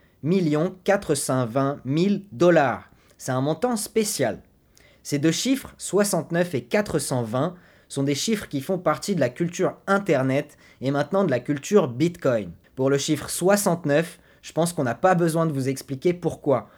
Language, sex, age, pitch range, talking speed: French, male, 20-39, 125-165 Hz, 160 wpm